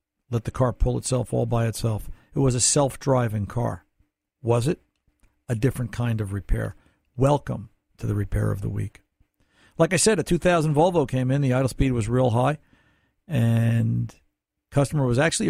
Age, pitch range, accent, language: 50-69, 115-160 Hz, American, English